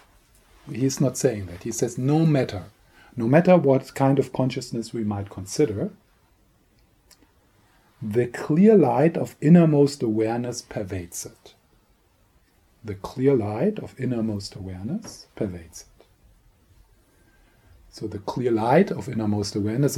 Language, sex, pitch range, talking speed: English, male, 110-135 Hz, 120 wpm